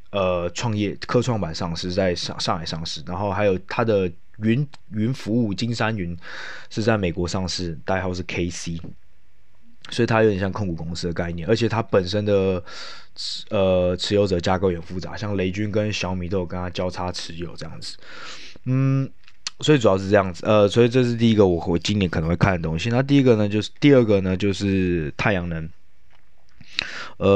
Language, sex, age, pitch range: Chinese, male, 20-39, 90-105 Hz